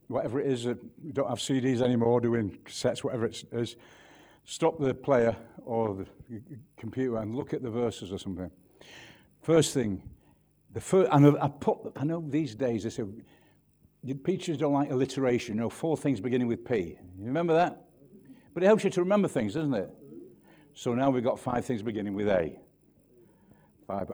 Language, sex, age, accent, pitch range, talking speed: English, male, 60-79, British, 105-135 Hz, 180 wpm